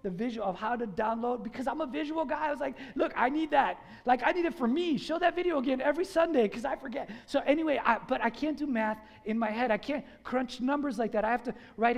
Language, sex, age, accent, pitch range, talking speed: English, male, 30-49, American, 220-280 Hz, 265 wpm